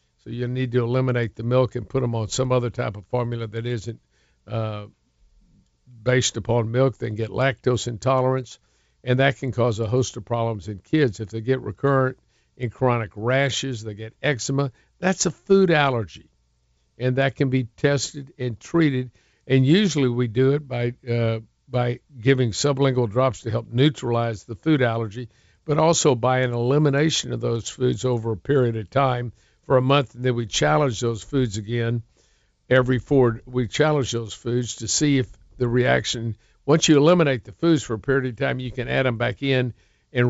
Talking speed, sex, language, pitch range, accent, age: 185 wpm, male, English, 115-135 Hz, American, 60-79